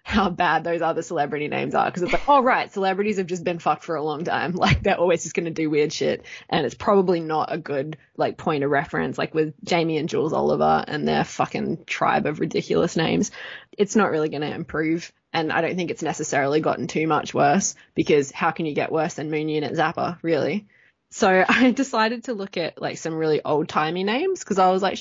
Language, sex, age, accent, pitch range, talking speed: English, female, 20-39, Australian, 155-205 Hz, 230 wpm